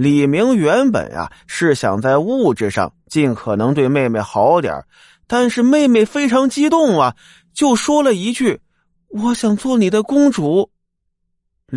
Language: Chinese